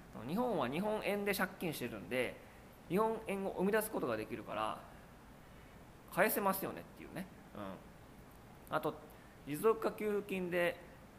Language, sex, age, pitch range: Japanese, male, 20-39, 120-195 Hz